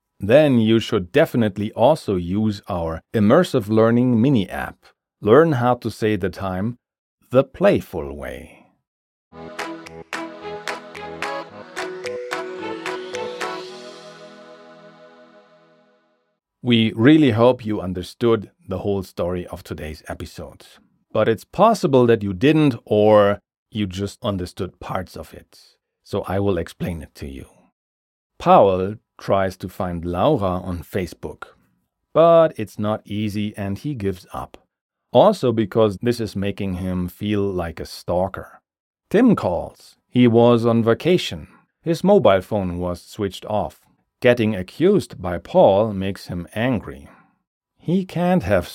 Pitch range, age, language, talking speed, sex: 95-130 Hz, 40-59, German, 120 wpm, male